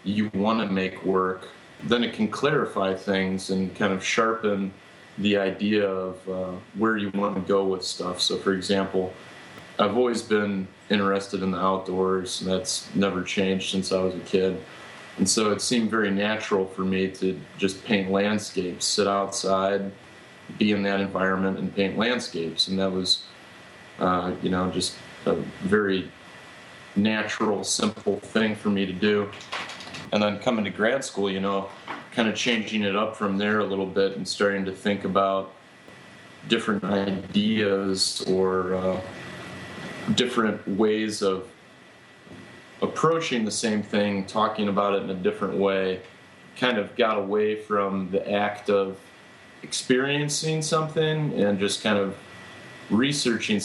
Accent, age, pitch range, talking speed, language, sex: American, 30-49, 95-105 Hz, 155 wpm, English, male